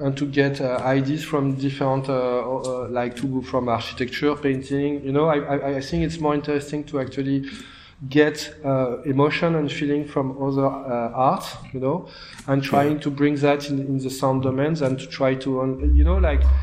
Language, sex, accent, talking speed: English, male, French, 195 wpm